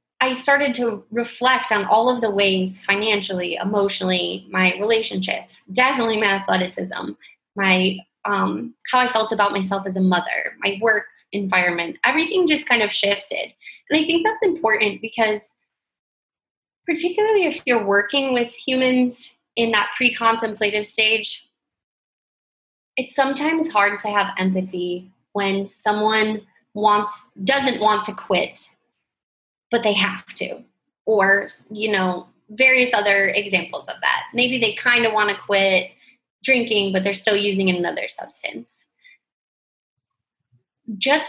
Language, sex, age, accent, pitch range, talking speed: English, female, 20-39, American, 195-245 Hz, 130 wpm